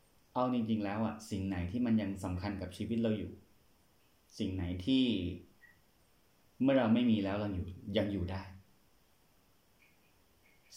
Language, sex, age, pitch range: Thai, male, 20-39, 95-115 Hz